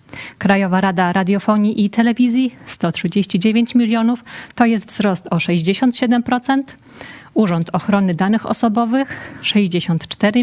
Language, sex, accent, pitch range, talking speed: Polish, female, native, 175-225 Hz, 100 wpm